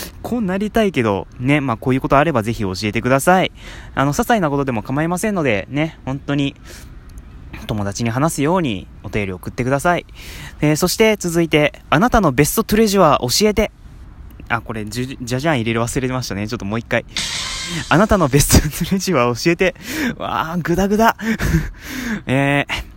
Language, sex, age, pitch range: Japanese, male, 20-39, 120-180 Hz